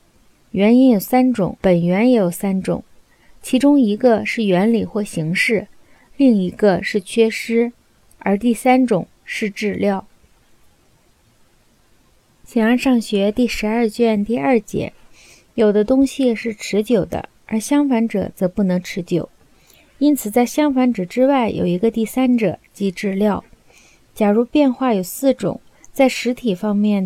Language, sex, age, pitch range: Chinese, female, 30-49, 200-250 Hz